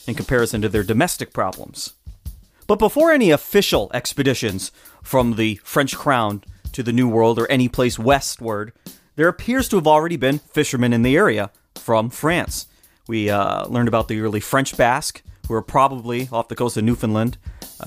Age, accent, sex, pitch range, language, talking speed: 30-49, American, male, 110-150 Hz, English, 175 wpm